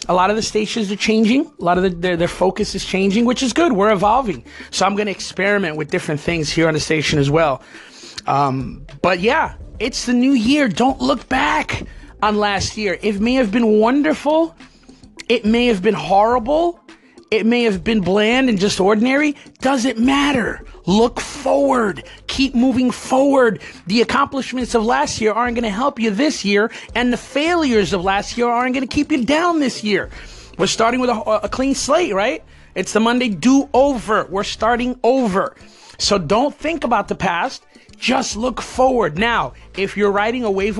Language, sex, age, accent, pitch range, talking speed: English, male, 30-49, American, 200-260 Hz, 190 wpm